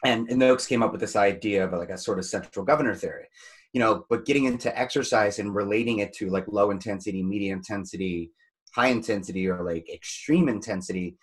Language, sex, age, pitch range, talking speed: English, male, 30-49, 95-125 Hz, 200 wpm